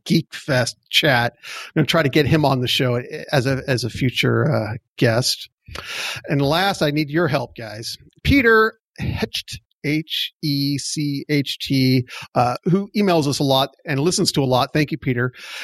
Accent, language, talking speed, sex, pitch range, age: American, English, 175 wpm, male, 135-160 Hz, 40-59